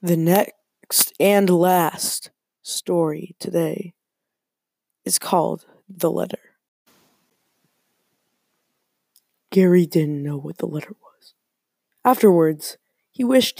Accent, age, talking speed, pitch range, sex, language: American, 20-39, 90 wpm, 165-200 Hz, female, English